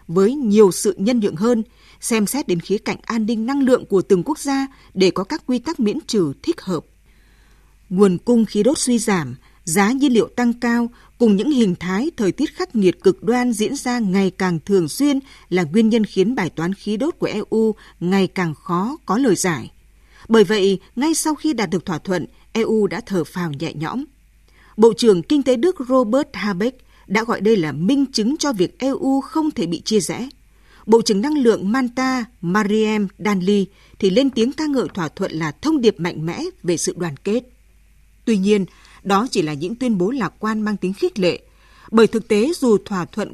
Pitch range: 190-250 Hz